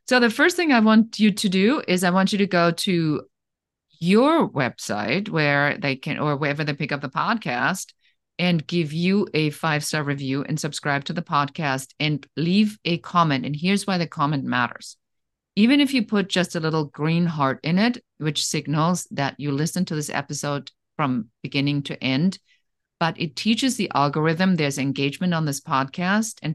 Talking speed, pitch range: 190 wpm, 140-180 Hz